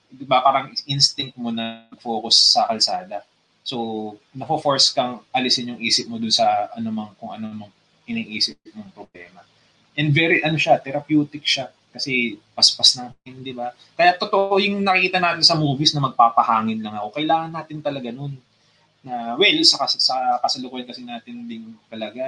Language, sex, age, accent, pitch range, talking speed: Filipino, male, 20-39, native, 110-160 Hz, 160 wpm